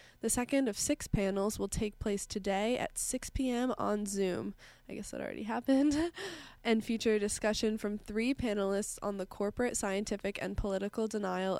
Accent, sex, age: American, female, 20-39